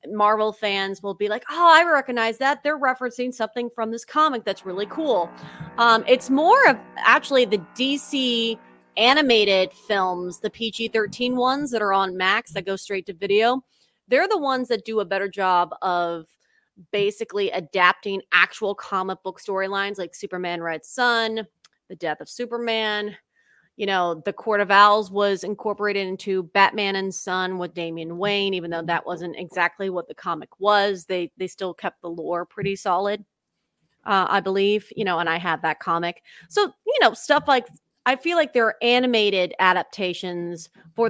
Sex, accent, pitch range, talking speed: female, American, 185-230 Hz, 170 wpm